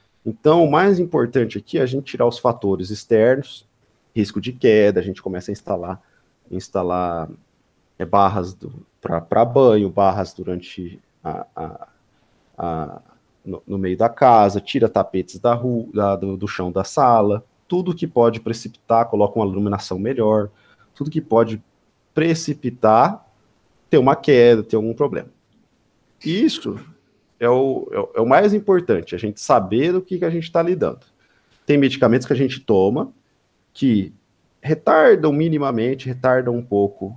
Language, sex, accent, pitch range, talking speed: Portuguese, male, Brazilian, 100-130 Hz, 135 wpm